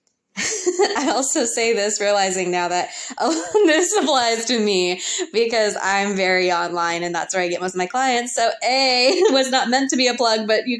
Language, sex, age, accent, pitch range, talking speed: English, female, 20-39, American, 190-235 Hz, 200 wpm